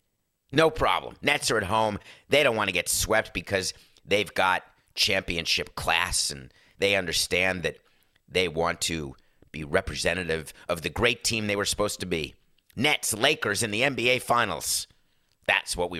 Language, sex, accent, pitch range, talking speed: English, male, American, 90-140 Hz, 160 wpm